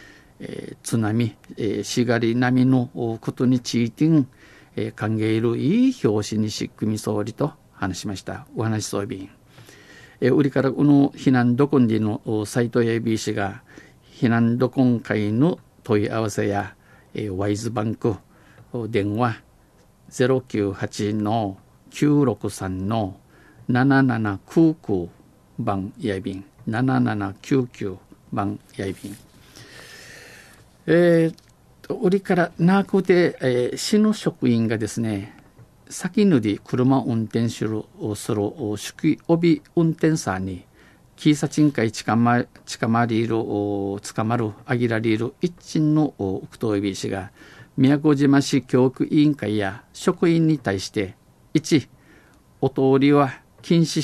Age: 50-69